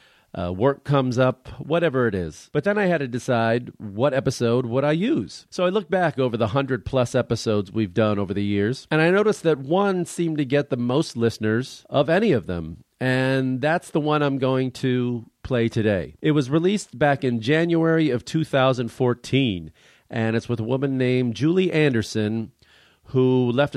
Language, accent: English, American